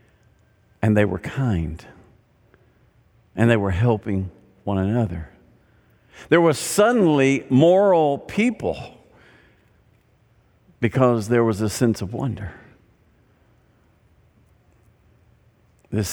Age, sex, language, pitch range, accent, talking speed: 50-69, male, English, 105-135 Hz, American, 85 wpm